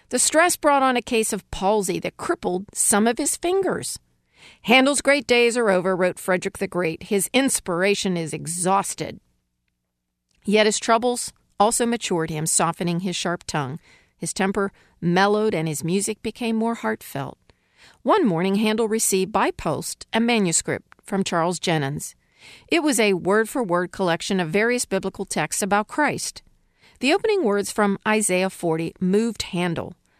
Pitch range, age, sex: 175-230 Hz, 50-69, female